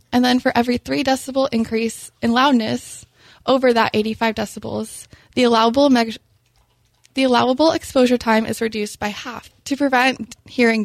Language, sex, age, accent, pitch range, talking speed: English, female, 20-39, American, 220-260 Hz, 150 wpm